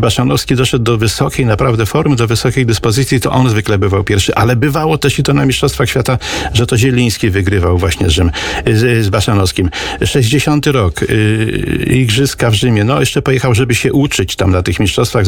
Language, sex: Polish, male